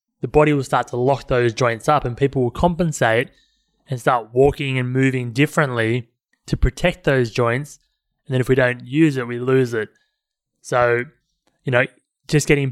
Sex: male